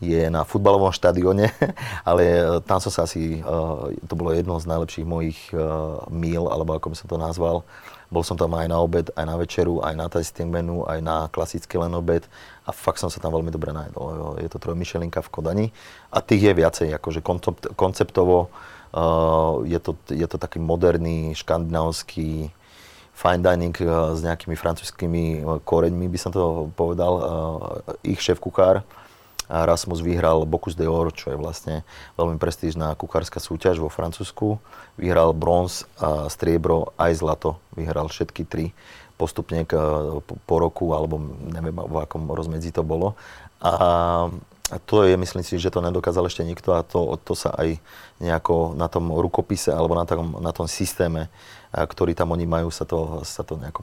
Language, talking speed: Slovak, 170 wpm